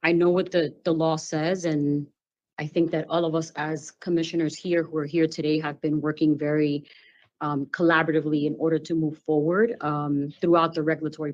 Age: 30-49